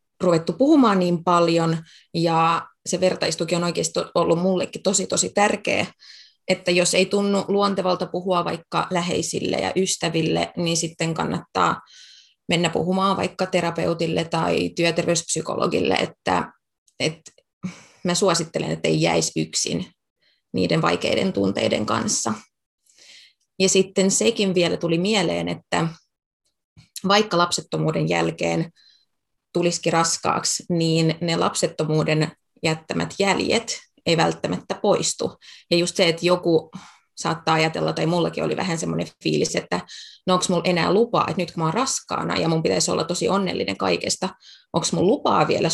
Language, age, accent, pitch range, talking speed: Finnish, 20-39, native, 160-185 Hz, 130 wpm